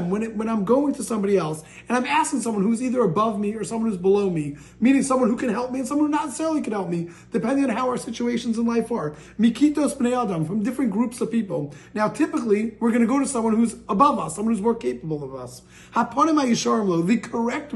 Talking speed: 245 wpm